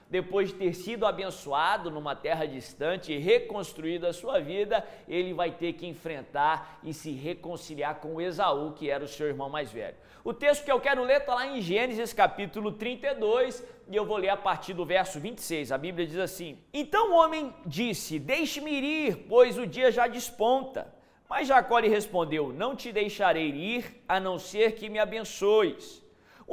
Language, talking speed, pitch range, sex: Portuguese, 185 wpm, 180-275 Hz, male